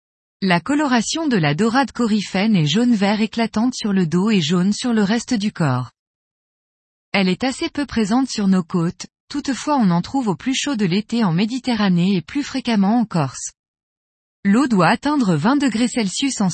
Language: French